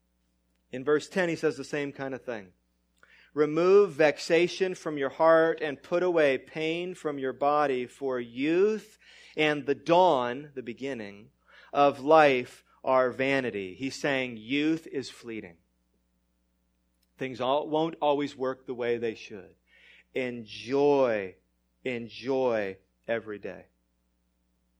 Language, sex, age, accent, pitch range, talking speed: English, male, 30-49, American, 115-150 Hz, 120 wpm